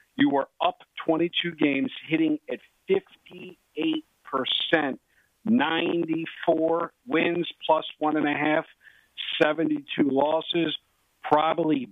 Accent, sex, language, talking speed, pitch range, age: American, male, English, 90 wpm, 135-170 Hz, 50-69